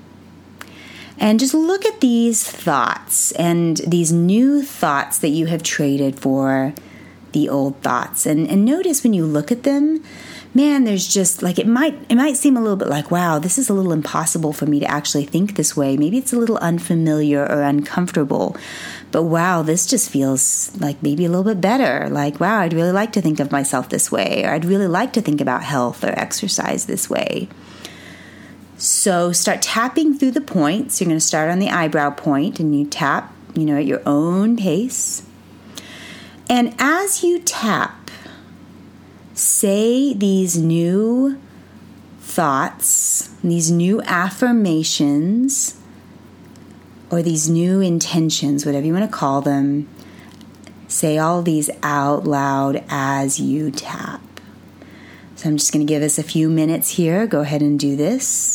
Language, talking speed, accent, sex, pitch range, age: English, 165 wpm, American, female, 145-220 Hz, 30-49